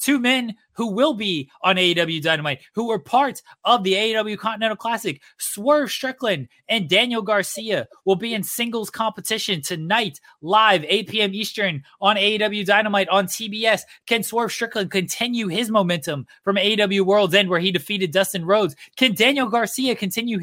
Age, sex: 20-39, male